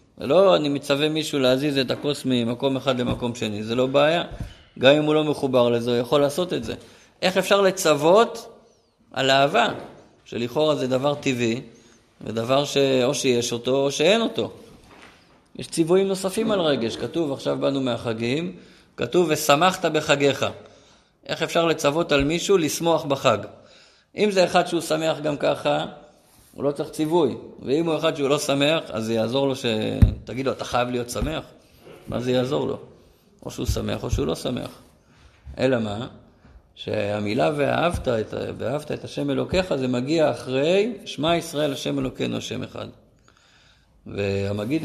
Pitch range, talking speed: 120-165 Hz, 160 wpm